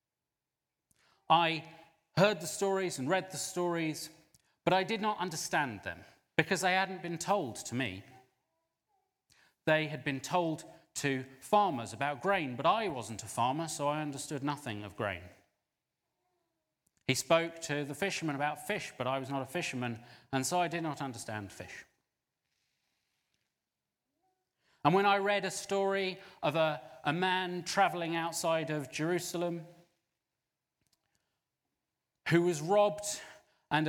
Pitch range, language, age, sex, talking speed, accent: 135-180 Hz, English, 30-49, male, 140 wpm, British